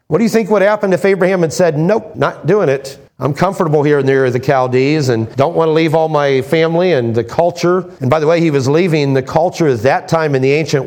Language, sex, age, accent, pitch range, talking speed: English, male, 40-59, American, 130-180 Hz, 270 wpm